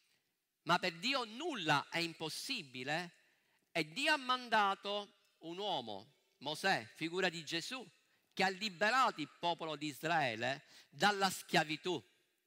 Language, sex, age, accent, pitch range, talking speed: Italian, male, 50-69, native, 170-265 Hz, 120 wpm